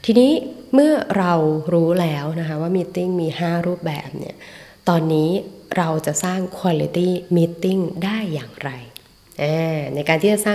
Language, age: Thai, 20-39